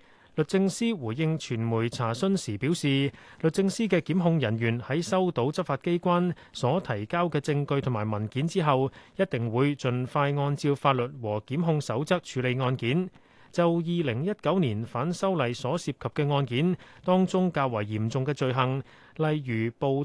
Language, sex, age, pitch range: Chinese, male, 30-49, 125-170 Hz